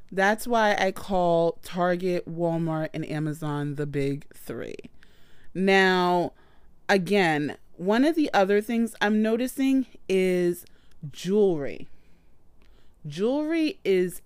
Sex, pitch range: female, 170-210 Hz